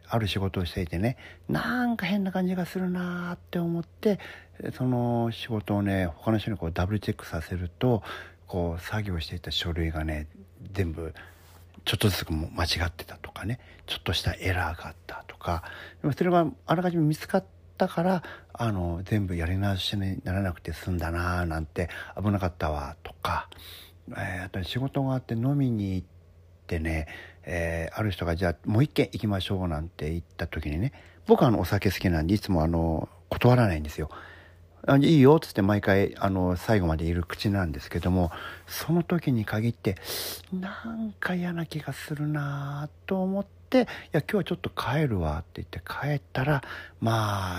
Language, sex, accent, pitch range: Japanese, male, native, 85-120 Hz